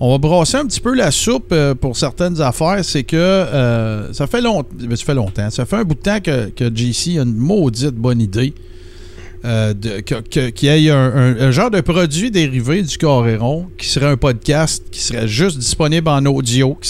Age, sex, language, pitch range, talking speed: 50-69, male, French, 125-175 Hz, 215 wpm